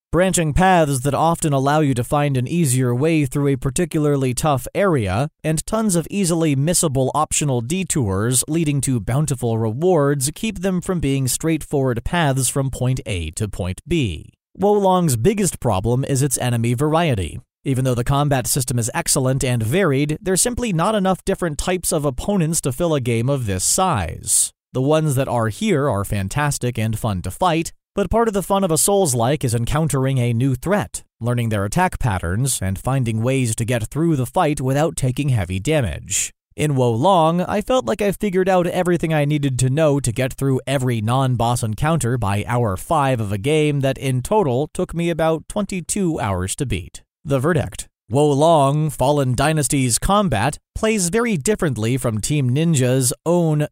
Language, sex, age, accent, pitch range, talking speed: English, male, 30-49, American, 125-165 Hz, 180 wpm